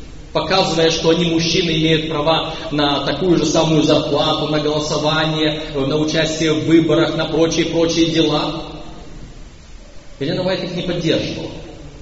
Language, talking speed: Russian, 125 wpm